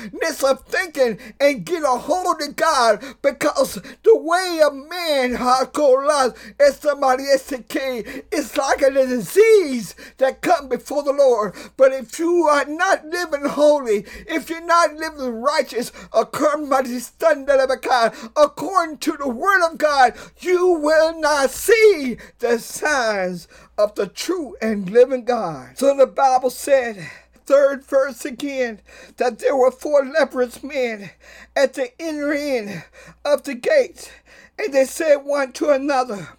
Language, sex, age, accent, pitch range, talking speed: English, male, 50-69, American, 255-310 Hz, 135 wpm